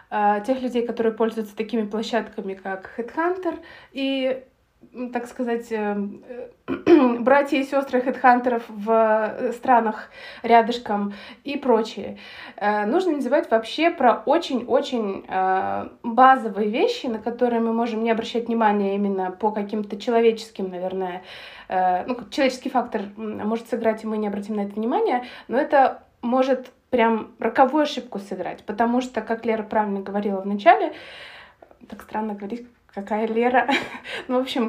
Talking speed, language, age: 130 wpm, Russian, 20-39